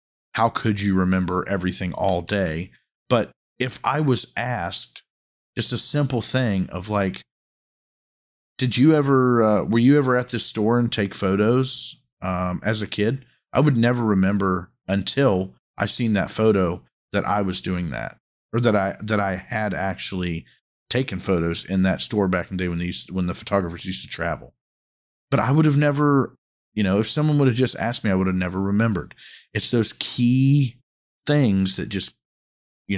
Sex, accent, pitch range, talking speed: male, American, 95-120 Hz, 180 wpm